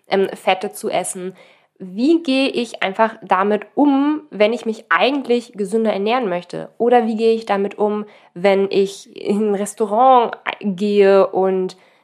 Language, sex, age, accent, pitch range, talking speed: German, female, 20-39, German, 190-225 Hz, 145 wpm